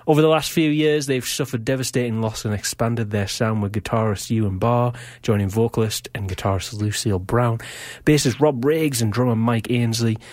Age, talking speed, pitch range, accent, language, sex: 30-49, 175 wpm, 110-145 Hz, British, English, male